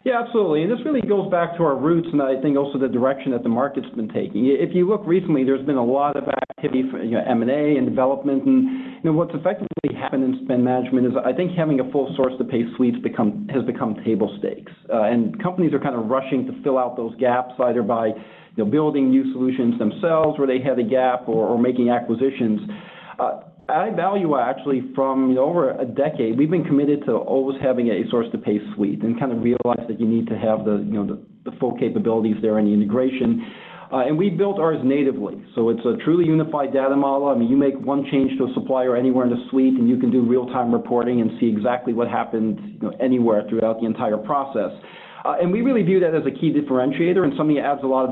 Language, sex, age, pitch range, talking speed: English, male, 40-59, 120-155 Hz, 225 wpm